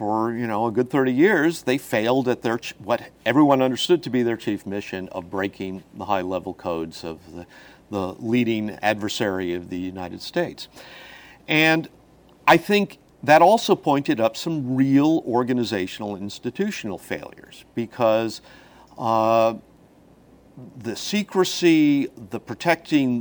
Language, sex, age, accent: English, male, 50-69, American